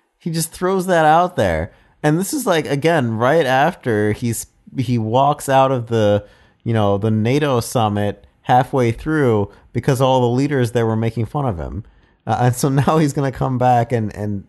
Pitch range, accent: 105-135 Hz, American